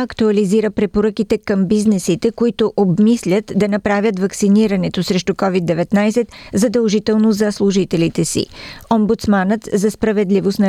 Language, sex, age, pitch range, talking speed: Bulgarian, female, 40-59, 185-220 Hz, 105 wpm